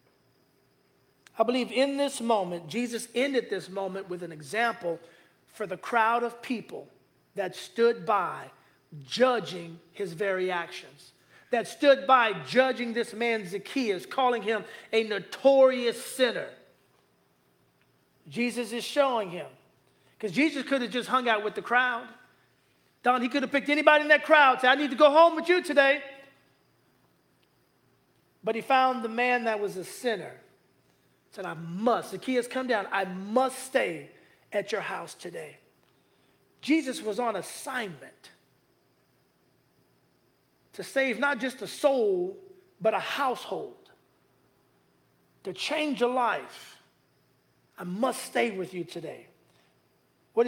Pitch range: 200-260 Hz